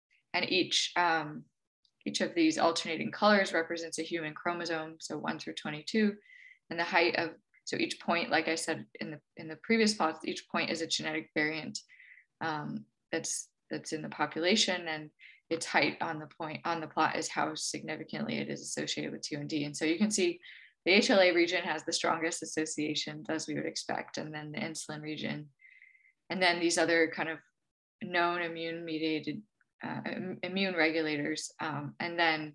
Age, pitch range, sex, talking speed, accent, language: 20-39, 160-195 Hz, female, 175 wpm, American, English